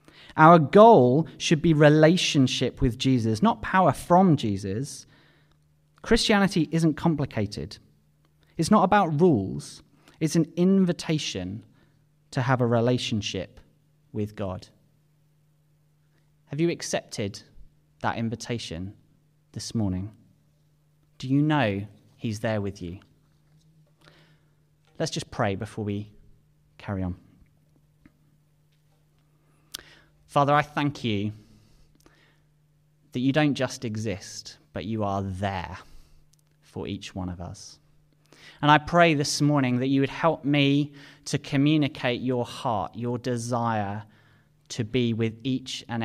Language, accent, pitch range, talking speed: English, British, 110-150 Hz, 115 wpm